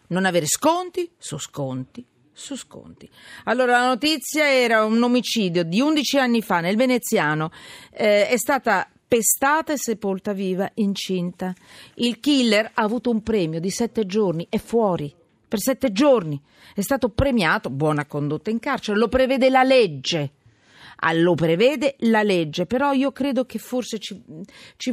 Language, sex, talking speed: Italian, female, 160 wpm